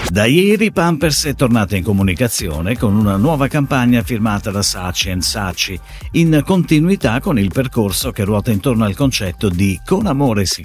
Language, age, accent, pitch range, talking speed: Italian, 50-69, native, 95-150 Hz, 165 wpm